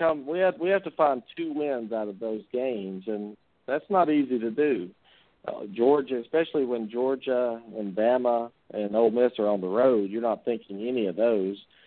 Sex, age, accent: male, 50-69, American